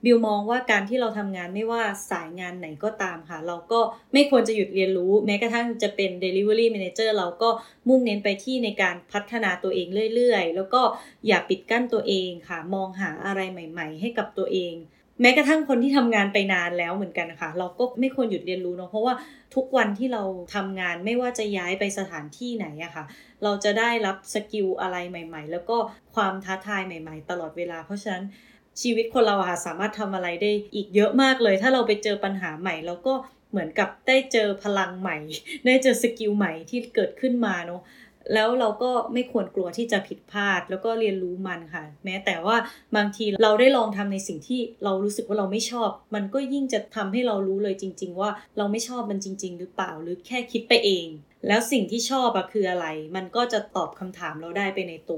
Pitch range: 185-230 Hz